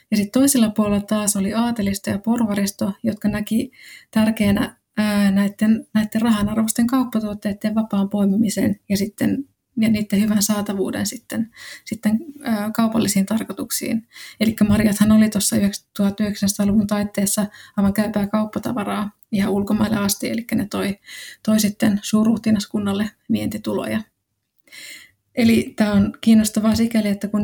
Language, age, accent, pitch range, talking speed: Finnish, 20-39, native, 205-220 Hz, 115 wpm